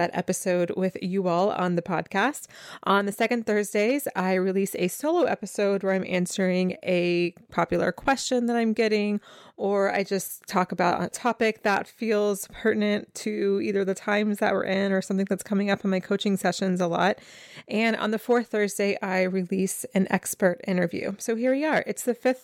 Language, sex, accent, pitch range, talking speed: English, female, American, 185-220 Hz, 185 wpm